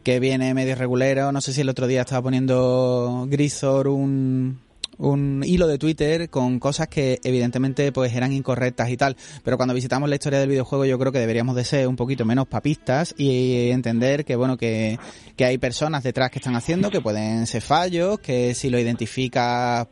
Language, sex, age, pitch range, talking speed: Spanish, male, 30-49, 125-145 Hz, 195 wpm